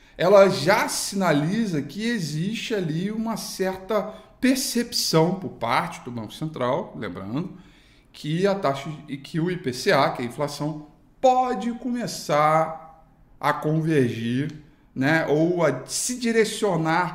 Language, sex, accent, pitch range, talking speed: Portuguese, male, Brazilian, 130-170 Hz, 115 wpm